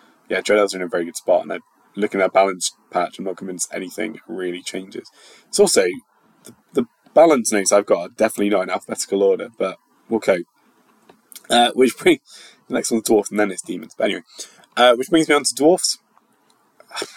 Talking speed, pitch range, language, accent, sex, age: 200 wpm, 100-115 Hz, English, British, male, 20-39